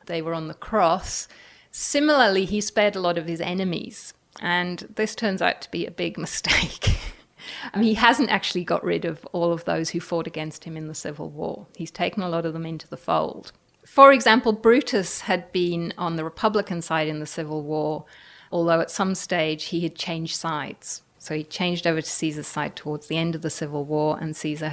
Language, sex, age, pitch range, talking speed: English, female, 30-49, 160-200 Hz, 210 wpm